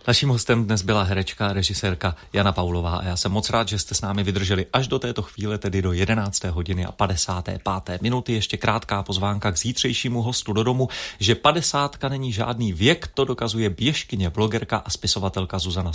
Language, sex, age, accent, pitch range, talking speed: Czech, male, 30-49, native, 95-110 Hz, 185 wpm